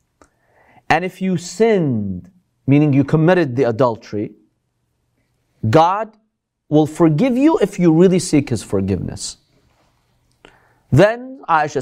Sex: male